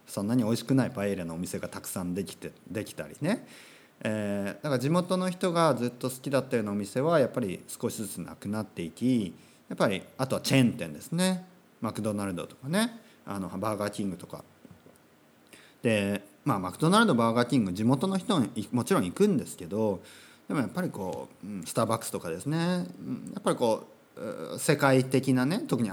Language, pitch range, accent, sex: Japanese, 100-160 Hz, native, male